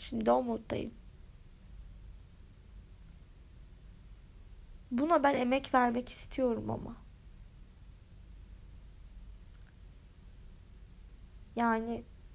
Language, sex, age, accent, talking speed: Turkish, female, 30-49, native, 50 wpm